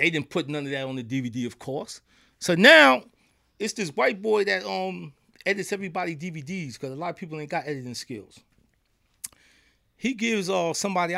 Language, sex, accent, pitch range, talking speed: English, male, American, 150-225 Hz, 190 wpm